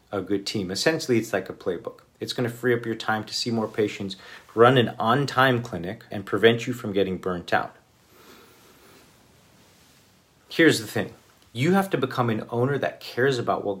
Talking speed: 185 wpm